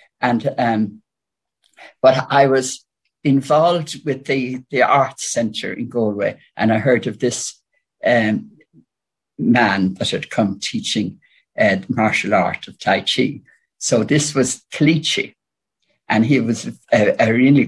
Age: 60-79